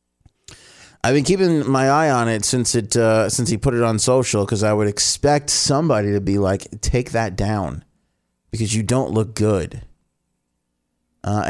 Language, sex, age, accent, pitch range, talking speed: English, male, 30-49, American, 100-130 Hz, 170 wpm